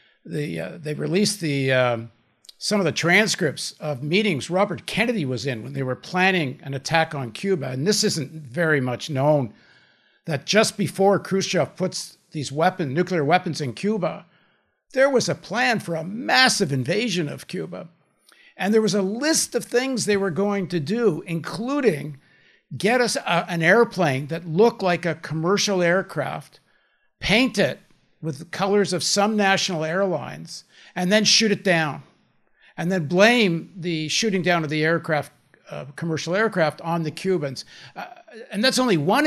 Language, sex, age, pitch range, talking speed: English, male, 60-79, 150-205 Hz, 160 wpm